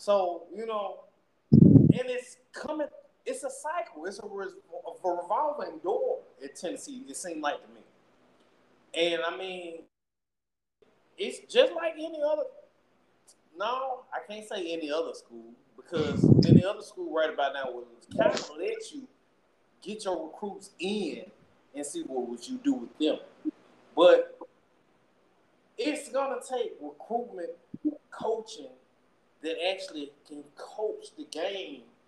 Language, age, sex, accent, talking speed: English, 30-49, male, American, 145 wpm